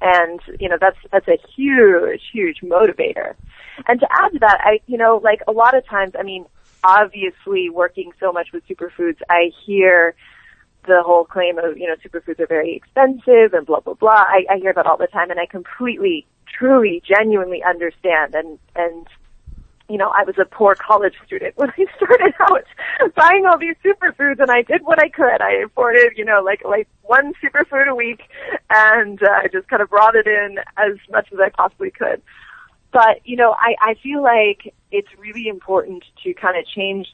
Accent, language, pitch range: American, English, 175-280 Hz